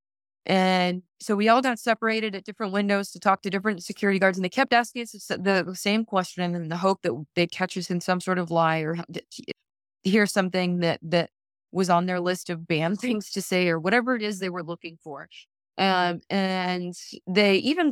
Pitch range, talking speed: 180-240 Hz, 205 wpm